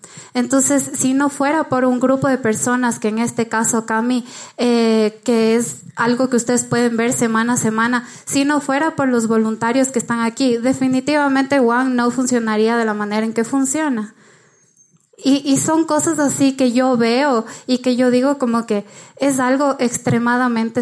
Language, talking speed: Spanish, 175 wpm